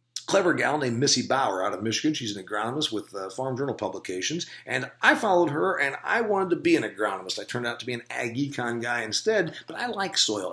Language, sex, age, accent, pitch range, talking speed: English, male, 50-69, American, 120-190 Hz, 235 wpm